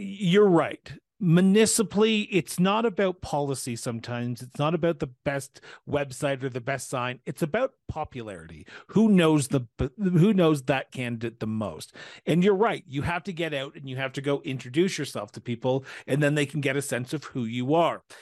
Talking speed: 190 wpm